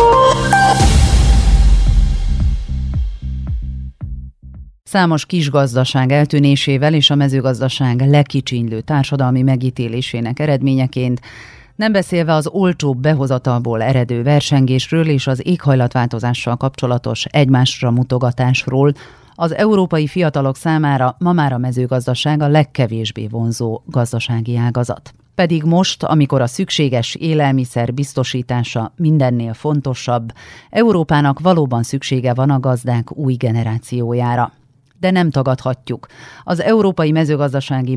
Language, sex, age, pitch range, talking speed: Hungarian, female, 40-59, 120-150 Hz, 95 wpm